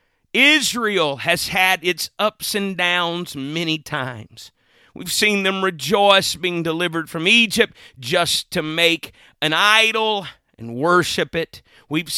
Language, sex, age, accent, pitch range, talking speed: English, male, 50-69, American, 150-205 Hz, 130 wpm